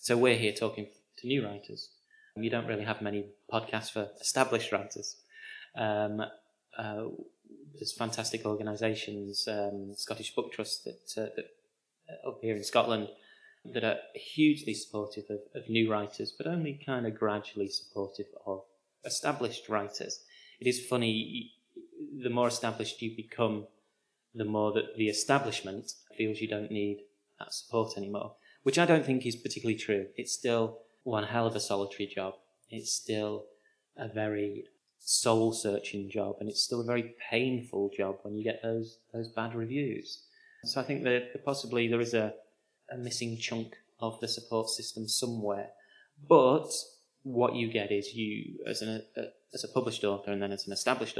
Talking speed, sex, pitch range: 160 wpm, male, 105-125 Hz